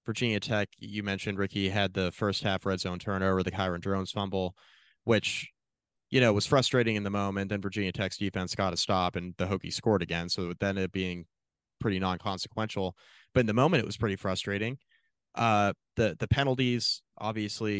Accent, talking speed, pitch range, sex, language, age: American, 190 wpm, 95-120 Hz, male, English, 20-39